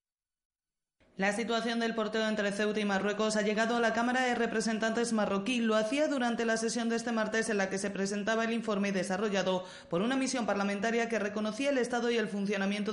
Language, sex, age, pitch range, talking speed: Spanish, female, 30-49, 185-225 Hz, 200 wpm